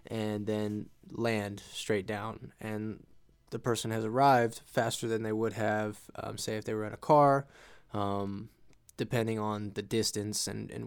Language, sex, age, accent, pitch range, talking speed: English, male, 20-39, American, 110-130 Hz, 165 wpm